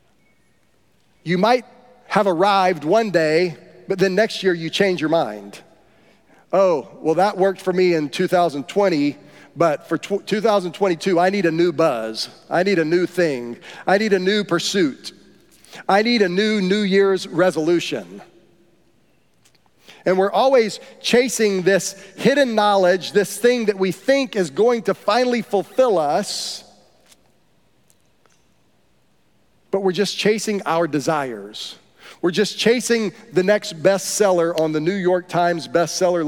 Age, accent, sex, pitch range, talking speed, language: 40-59, American, male, 165-205 Hz, 135 wpm, English